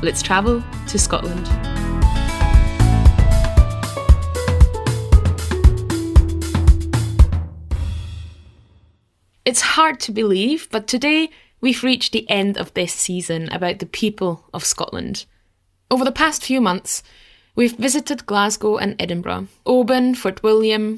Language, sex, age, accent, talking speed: English, female, 10-29, British, 100 wpm